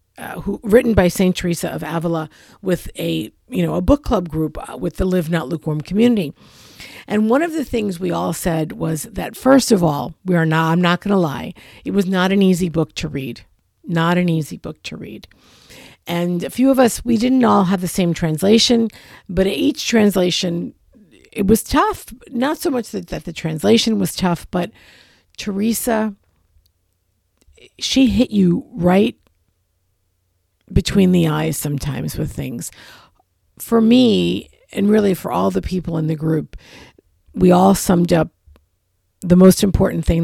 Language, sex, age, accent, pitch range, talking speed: English, female, 50-69, American, 135-200 Hz, 175 wpm